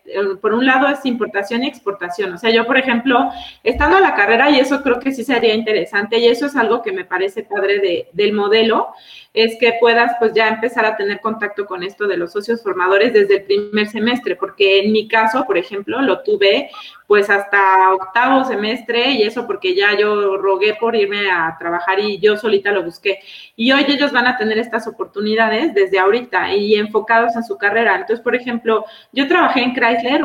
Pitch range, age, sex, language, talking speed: 200-240 Hz, 30-49, female, Spanish, 200 wpm